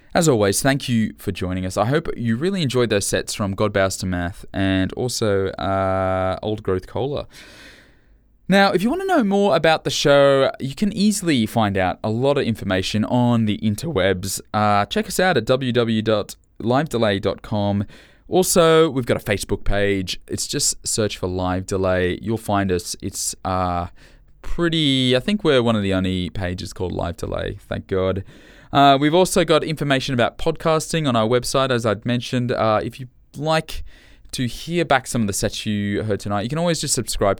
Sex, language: male, English